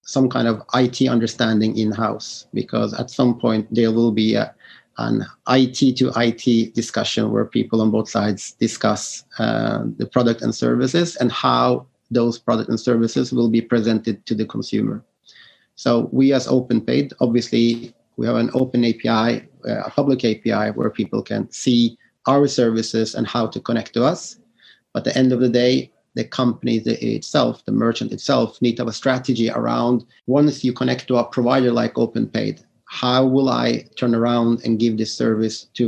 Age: 30-49